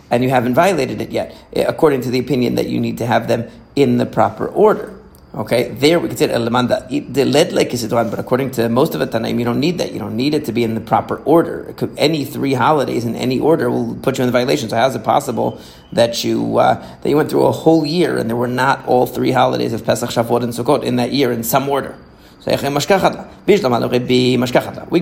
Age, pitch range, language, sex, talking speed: 30-49, 115-130 Hz, English, male, 225 wpm